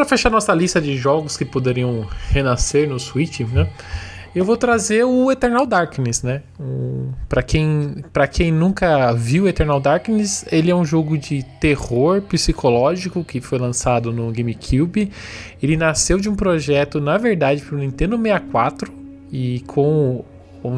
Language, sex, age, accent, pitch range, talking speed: Portuguese, male, 20-39, Brazilian, 125-175 Hz, 150 wpm